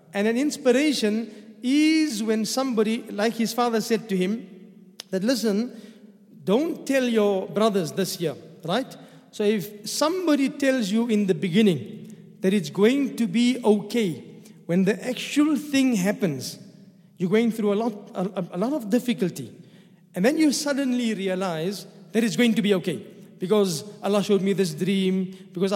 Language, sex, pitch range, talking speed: English, male, 195-230 Hz, 160 wpm